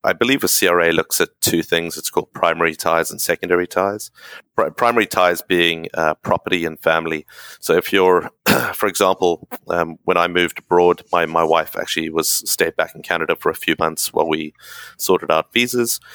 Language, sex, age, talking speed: English, male, 30-49, 190 wpm